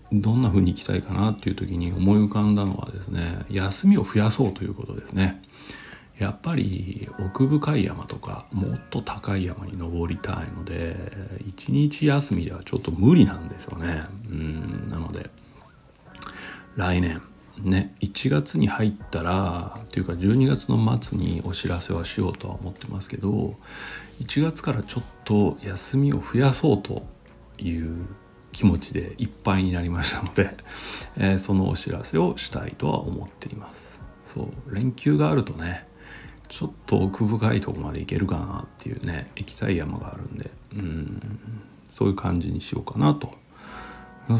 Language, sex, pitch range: Japanese, male, 90-110 Hz